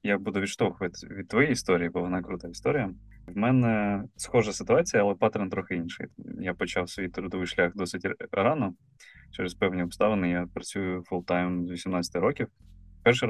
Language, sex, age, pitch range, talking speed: Ukrainian, male, 20-39, 90-105 Hz, 165 wpm